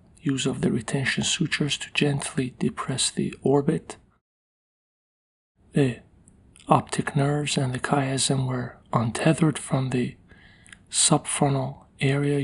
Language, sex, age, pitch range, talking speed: English, male, 40-59, 125-145 Hz, 105 wpm